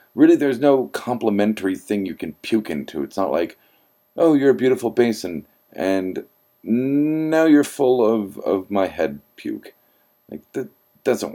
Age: 40-59